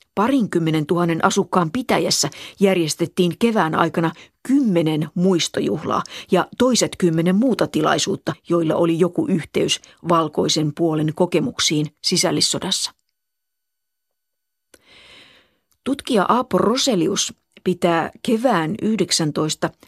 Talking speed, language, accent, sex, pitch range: 85 wpm, Finnish, native, female, 165-195 Hz